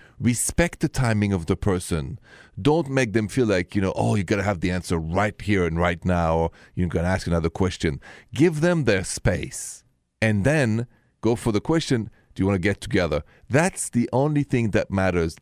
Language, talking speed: English, 210 wpm